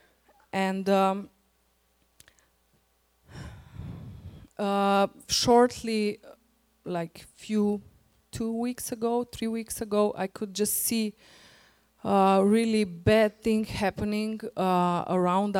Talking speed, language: 95 wpm, English